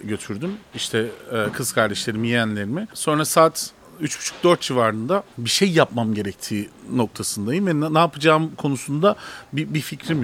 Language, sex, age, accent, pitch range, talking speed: Turkish, male, 40-59, native, 140-200 Hz, 125 wpm